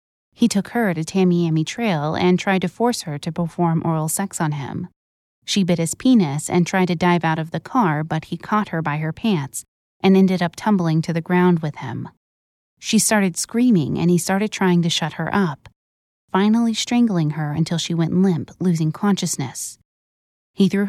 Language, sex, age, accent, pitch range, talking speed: English, female, 20-39, American, 160-190 Hz, 190 wpm